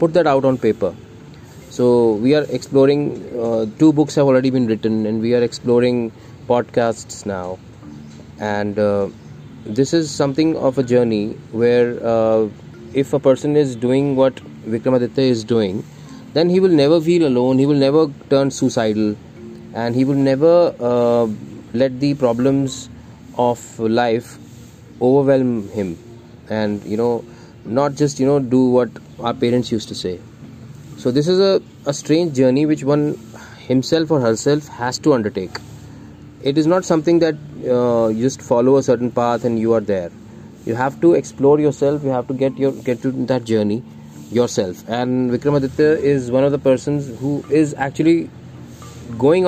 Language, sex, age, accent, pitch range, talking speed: Hindi, male, 30-49, native, 115-140 Hz, 165 wpm